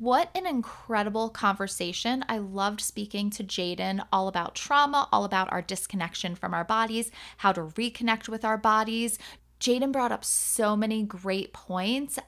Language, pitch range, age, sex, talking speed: English, 195-240 Hz, 20-39, female, 155 wpm